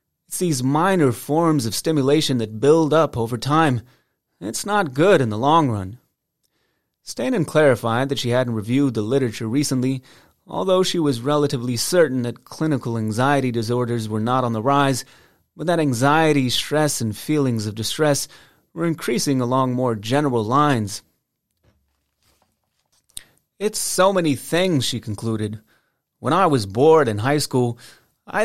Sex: male